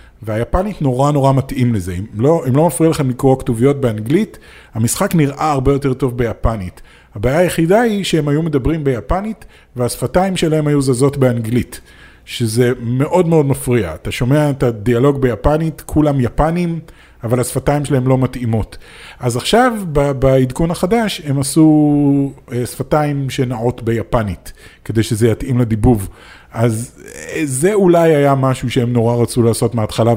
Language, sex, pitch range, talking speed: Hebrew, male, 115-145 Hz, 145 wpm